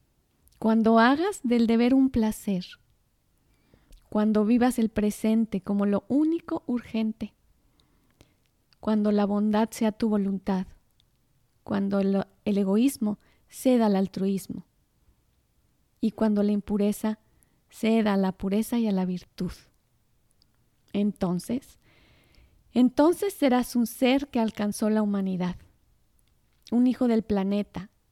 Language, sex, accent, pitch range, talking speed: Spanish, female, Mexican, 205-255 Hz, 110 wpm